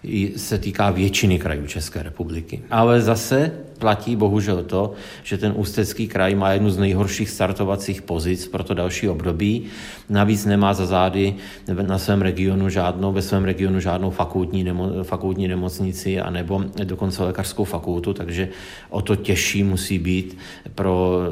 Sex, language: male, Czech